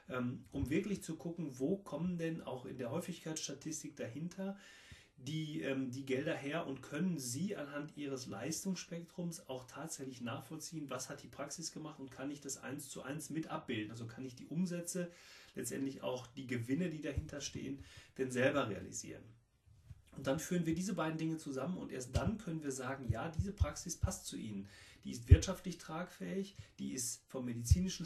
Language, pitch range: German, 130-160 Hz